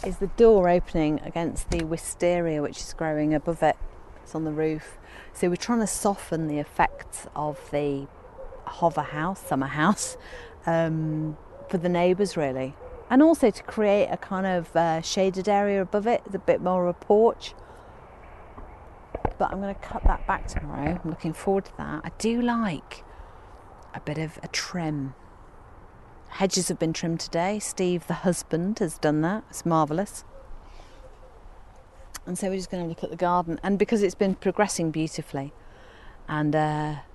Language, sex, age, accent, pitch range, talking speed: English, female, 40-59, British, 155-195 Hz, 165 wpm